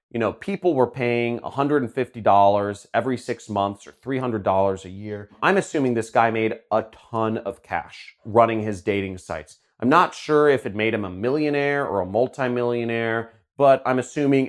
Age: 30-49